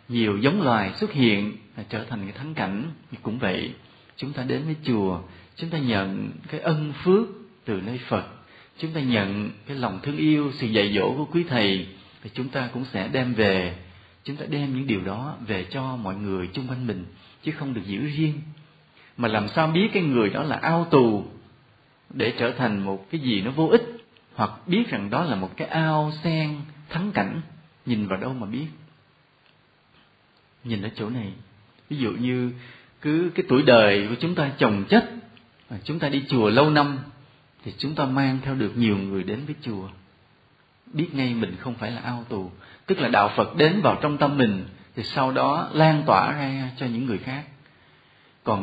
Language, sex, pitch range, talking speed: Vietnamese, male, 105-150 Hz, 200 wpm